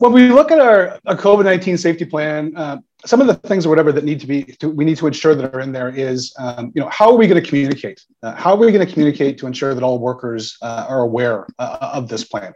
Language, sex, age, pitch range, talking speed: English, male, 30-49, 120-160 Hz, 275 wpm